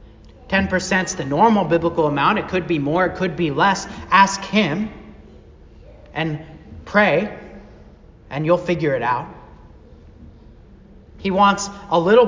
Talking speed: 130 wpm